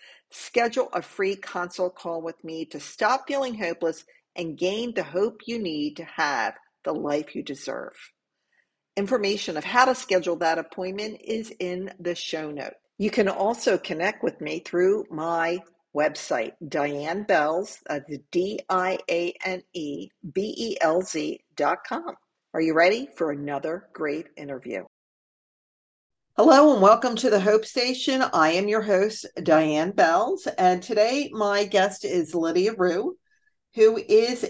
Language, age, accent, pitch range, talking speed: English, 50-69, American, 170-255 Hz, 135 wpm